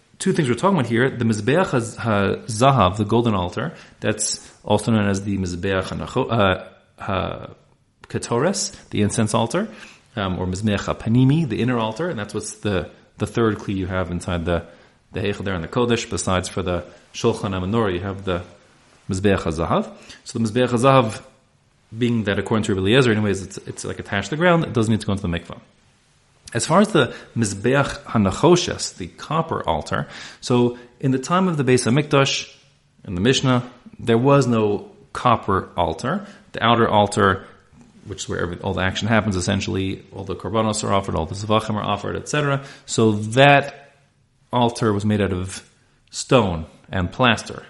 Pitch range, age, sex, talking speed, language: 95-125 Hz, 30-49, male, 175 wpm, English